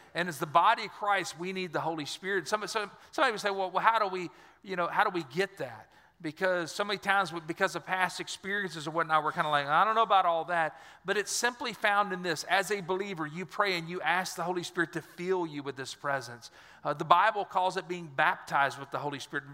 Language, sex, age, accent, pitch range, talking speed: English, male, 40-59, American, 150-195 Hz, 255 wpm